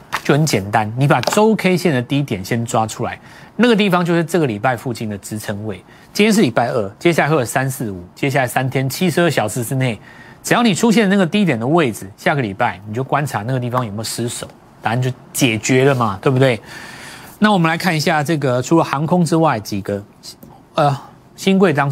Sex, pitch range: male, 110-160 Hz